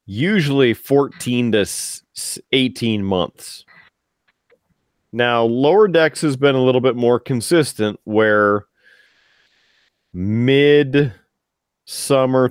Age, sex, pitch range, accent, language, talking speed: 40-59, male, 105-130 Hz, American, English, 80 wpm